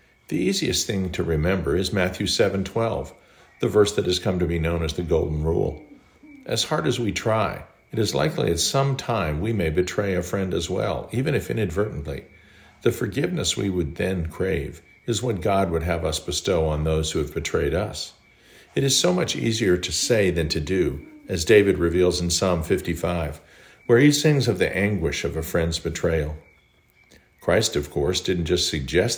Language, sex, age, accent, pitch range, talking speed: English, male, 50-69, American, 85-115 Hz, 190 wpm